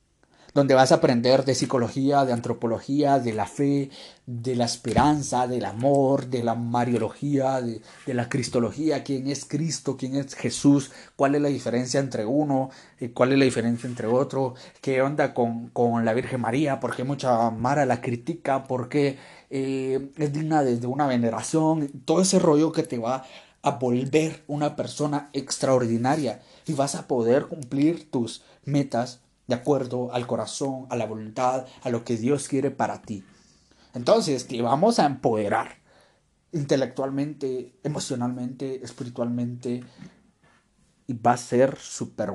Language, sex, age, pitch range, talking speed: Spanish, male, 30-49, 125-145 Hz, 155 wpm